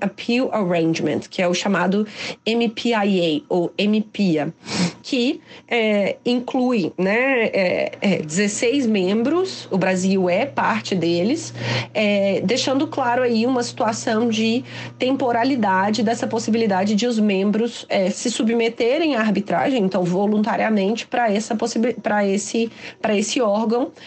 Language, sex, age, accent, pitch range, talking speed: Portuguese, female, 30-49, Brazilian, 175-230 Hz, 115 wpm